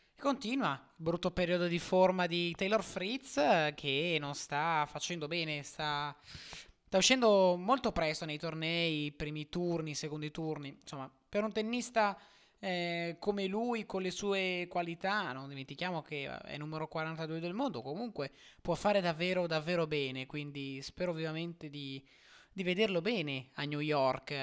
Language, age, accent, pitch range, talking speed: Italian, 20-39, native, 135-175 Hz, 150 wpm